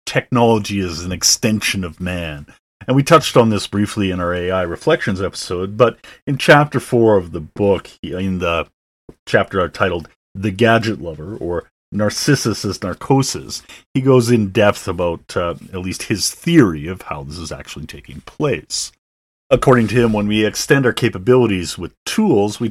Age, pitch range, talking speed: 40-59, 85-115 Hz, 165 wpm